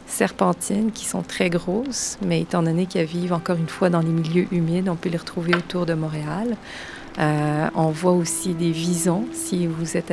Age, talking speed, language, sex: 30-49, 195 wpm, French, female